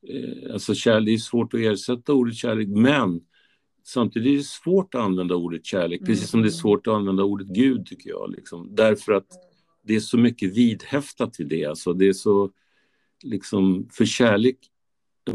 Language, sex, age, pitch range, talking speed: Swedish, male, 50-69, 95-115 Hz, 180 wpm